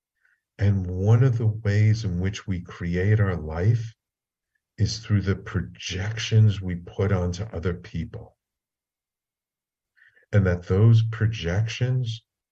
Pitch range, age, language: 90-115 Hz, 50-69, English